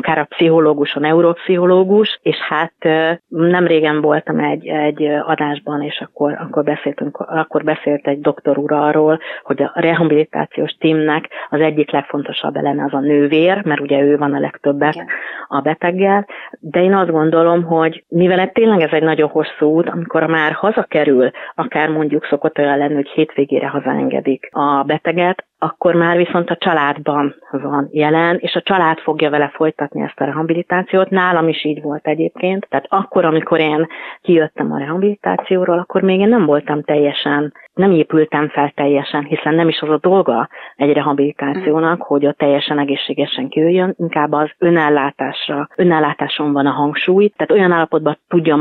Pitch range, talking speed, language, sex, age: 145-170 Hz, 160 wpm, Hungarian, female, 30-49